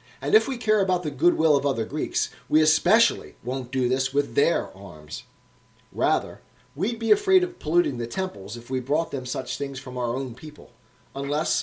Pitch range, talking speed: 125-195 Hz, 190 wpm